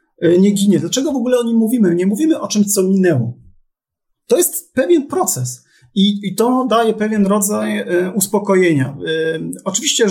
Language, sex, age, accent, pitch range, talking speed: Polish, male, 40-59, native, 175-215 Hz, 165 wpm